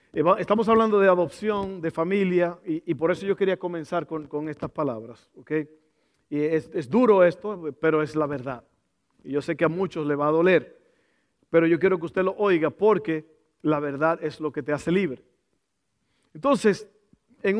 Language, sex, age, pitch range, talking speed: Spanish, male, 50-69, 150-195 Hz, 190 wpm